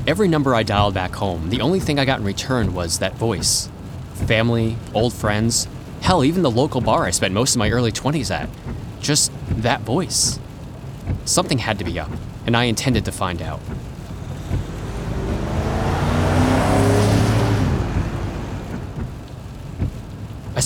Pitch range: 95-125 Hz